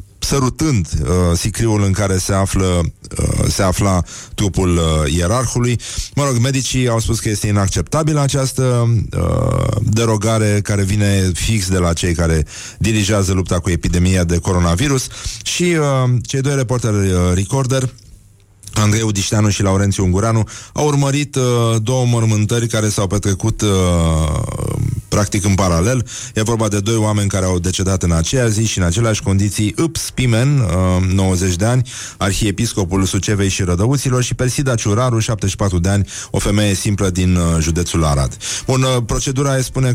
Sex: male